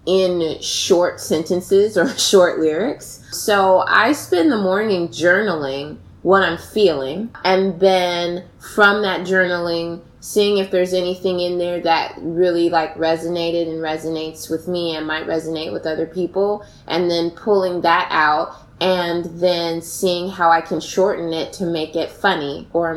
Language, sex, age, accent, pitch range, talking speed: English, female, 20-39, American, 160-185 Hz, 150 wpm